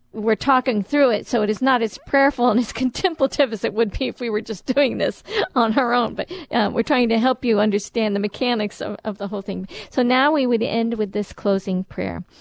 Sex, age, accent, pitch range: female, 50-69, American, 205-265 Hz